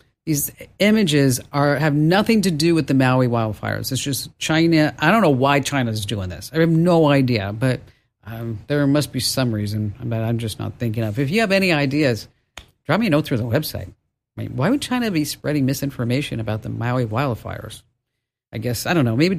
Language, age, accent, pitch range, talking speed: English, 50-69, American, 125-165 Hz, 210 wpm